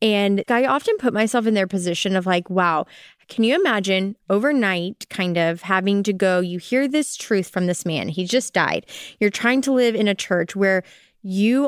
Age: 20-39